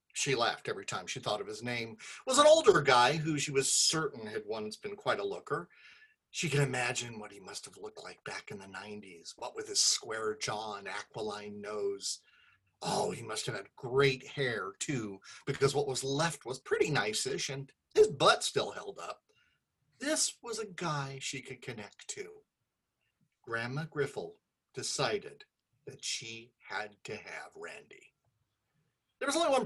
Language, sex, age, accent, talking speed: English, male, 40-59, American, 175 wpm